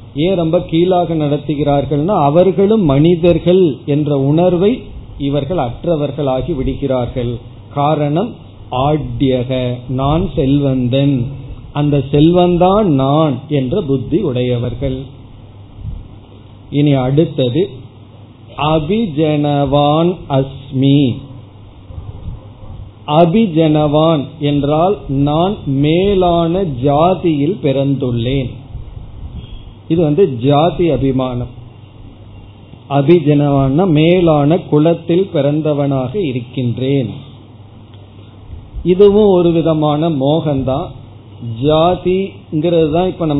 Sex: male